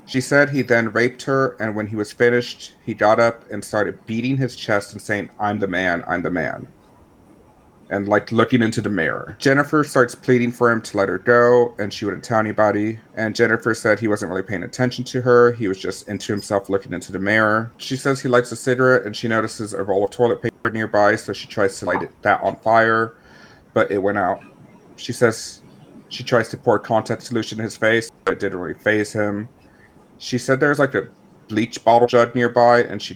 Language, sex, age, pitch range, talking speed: English, male, 40-59, 105-120 Hz, 220 wpm